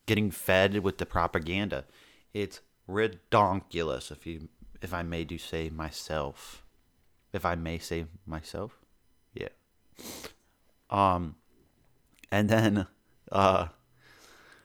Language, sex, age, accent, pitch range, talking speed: English, male, 30-49, American, 90-115 Hz, 100 wpm